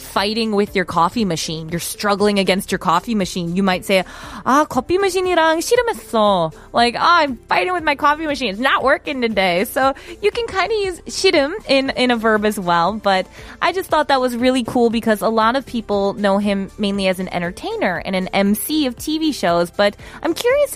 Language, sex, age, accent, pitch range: Korean, female, 20-39, American, 205-295 Hz